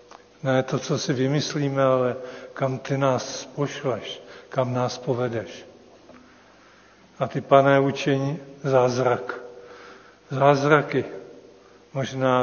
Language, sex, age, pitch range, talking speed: Czech, male, 50-69, 125-140 Hz, 95 wpm